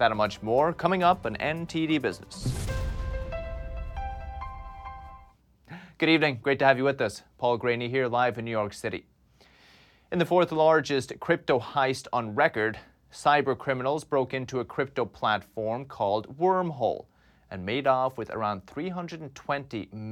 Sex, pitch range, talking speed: male, 105-140 Hz, 145 wpm